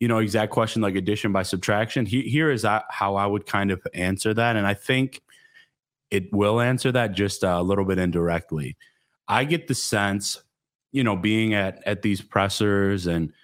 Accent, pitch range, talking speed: American, 100-125 Hz, 190 wpm